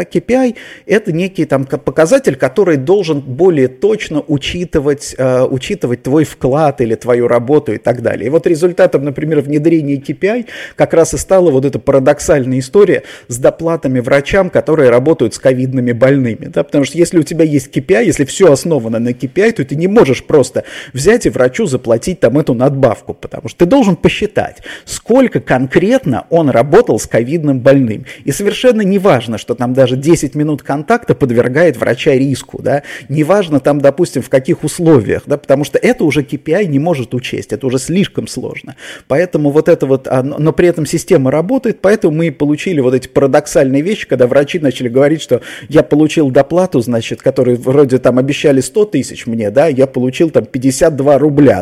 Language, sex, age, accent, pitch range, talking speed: Russian, male, 30-49, native, 130-170 Hz, 175 wpm